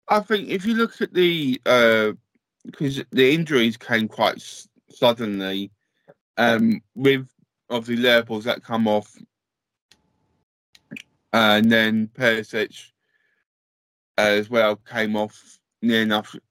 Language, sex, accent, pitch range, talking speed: English, male, British, 105-125 Hz, 120 wpm